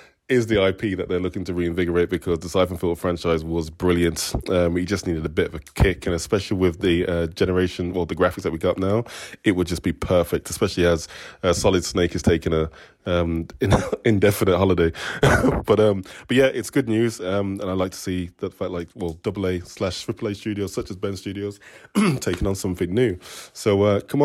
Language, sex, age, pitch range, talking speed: English, male, 20-39, 90-100 Hz, 210 wpm